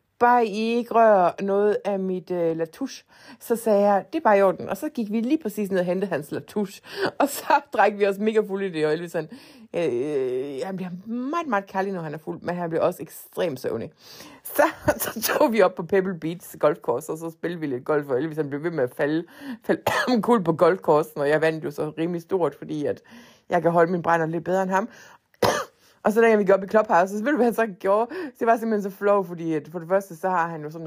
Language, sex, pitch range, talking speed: Danish, female, 170-245 Hz, 255 wpm